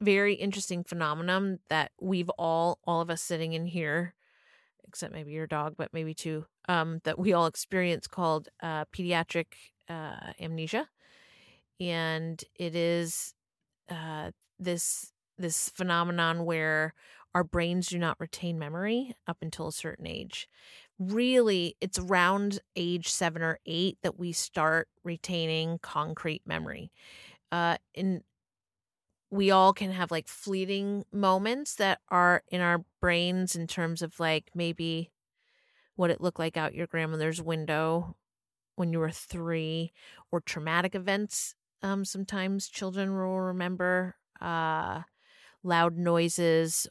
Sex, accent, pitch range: female, American, 160-180 Hz